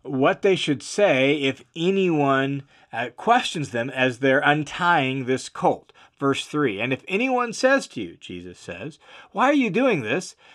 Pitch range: 120-165 Hz